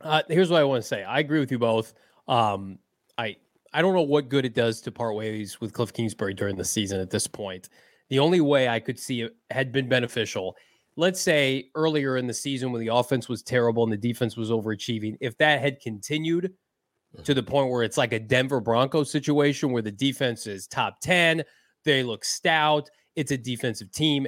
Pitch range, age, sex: 120-150 Hz, 20-39, male